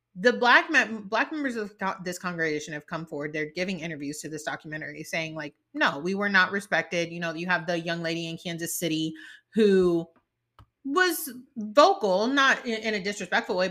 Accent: American